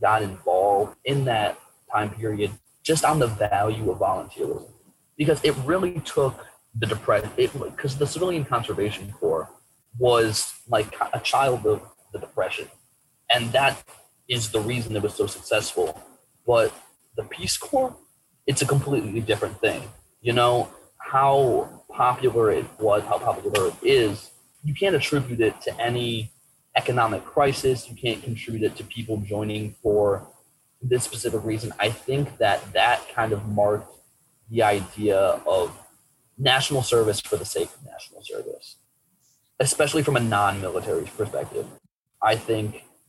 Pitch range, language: 110-145 Hz, English